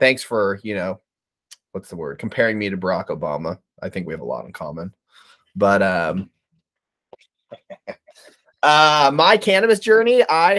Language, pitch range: English, 110-145 Hz